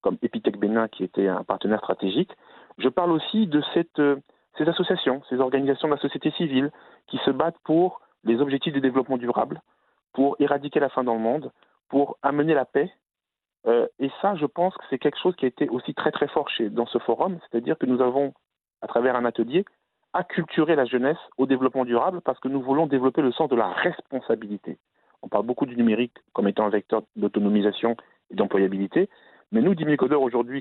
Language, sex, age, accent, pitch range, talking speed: French, male, 40-59, French, 120-160 Hz, 200 wpm